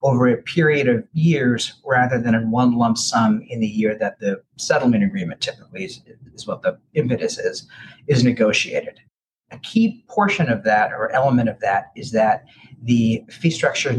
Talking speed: 175 wpm